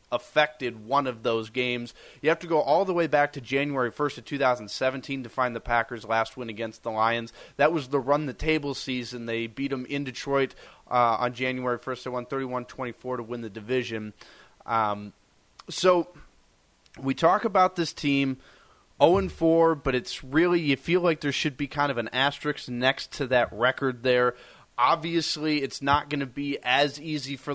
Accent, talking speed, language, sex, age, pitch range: American, 185 wpm, English, male, 30-49, 125-150 Hz